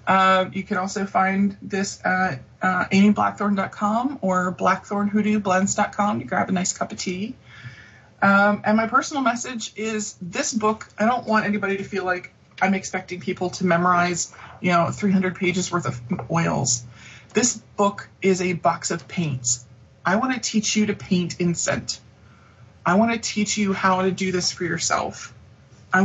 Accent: American